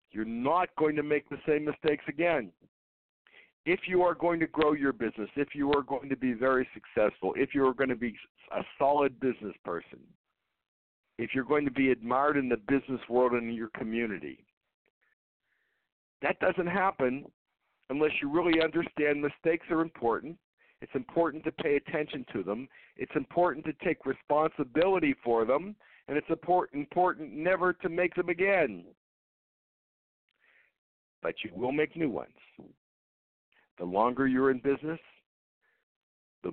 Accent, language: American, English